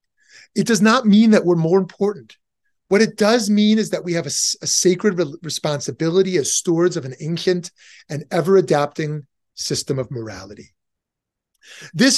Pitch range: 155-205 Hz